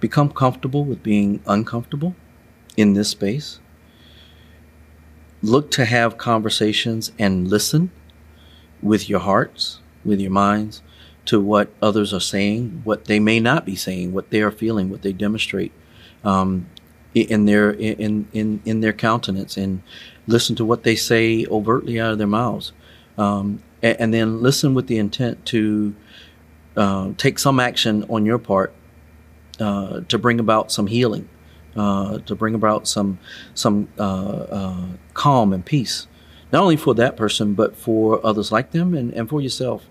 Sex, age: male, 40-59